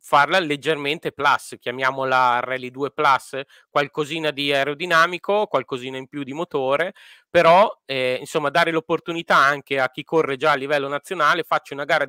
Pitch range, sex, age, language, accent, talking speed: 140-165 Hz, male, 30-49, Italian, native, 155 wpm